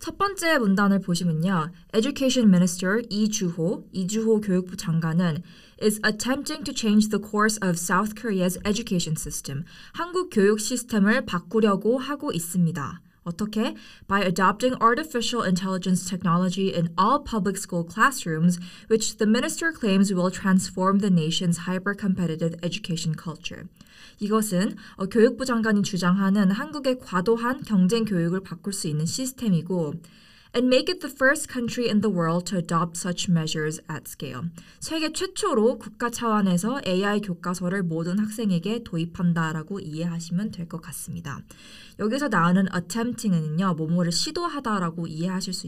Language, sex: English, female